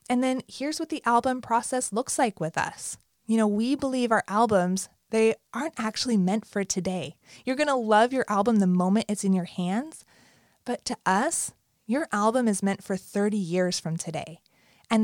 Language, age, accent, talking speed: English, 20-39, American, 190 wpm